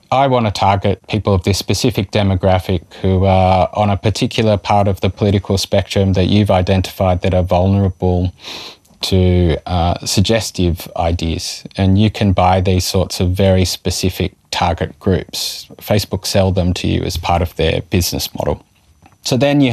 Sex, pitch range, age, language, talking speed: male, 95-120 Hz, 20-39, English, 165 wpm